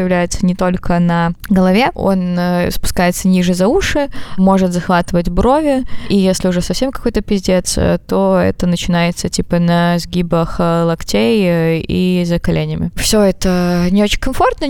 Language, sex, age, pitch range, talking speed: Russian, female, 20-39, 170-200 Hz, 145 wpm